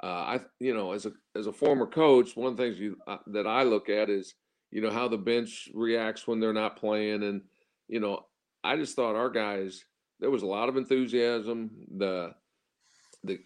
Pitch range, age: 105-125 Hz, 50-69